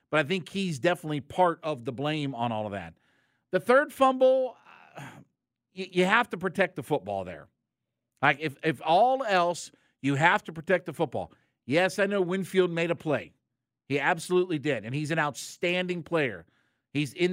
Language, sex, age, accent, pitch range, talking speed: English, male, 50-69, American, 140-205 Hz, 175 wpm